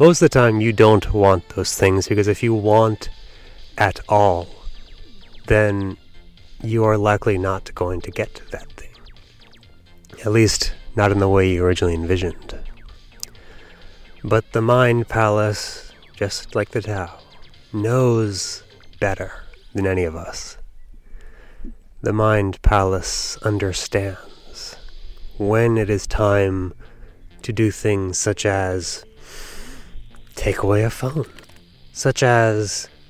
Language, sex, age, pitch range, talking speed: English, male, 30-49, 95-115 Hz, 125 wpm